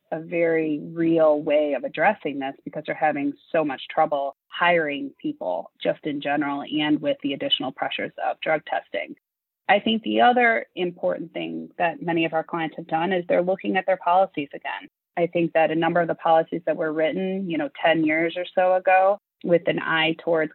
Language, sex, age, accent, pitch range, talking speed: English, female, 30-49, American, 150-185 Hz, 200 wpm